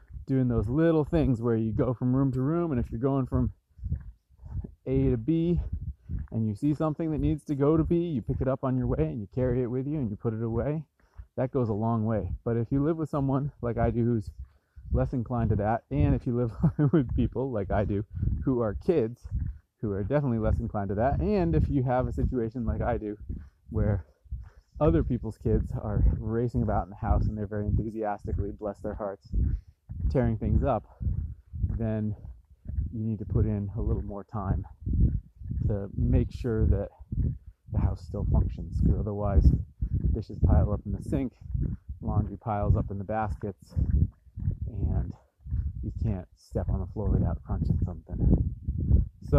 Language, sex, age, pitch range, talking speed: English, male, 30-49, 90-125 Hz, 190 wpm